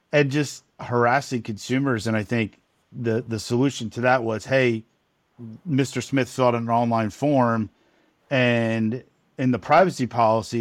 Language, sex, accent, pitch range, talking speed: English, male, American, 105-125 Hz, 140 wpm